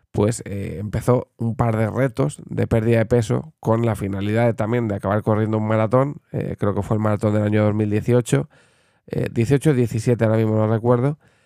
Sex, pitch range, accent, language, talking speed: male, 110-120 Hz, Spanish, Spanish, 190 wpm